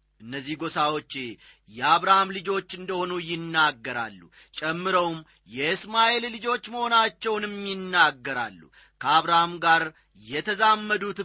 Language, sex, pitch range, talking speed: Amharic, male, 155-205 Hz, 70 wpm